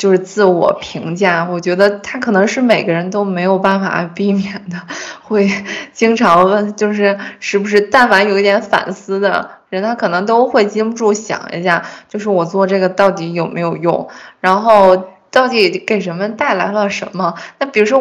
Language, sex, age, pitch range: Chinese, female, 20-39, 190-230 Hz